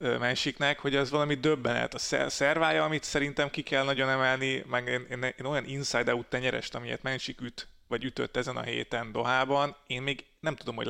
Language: Hungarian